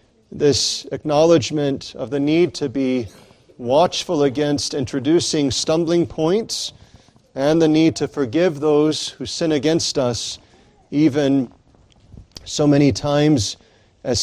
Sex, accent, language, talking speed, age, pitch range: male, American, English, 115 wpm, 40-59, 120-170 Hz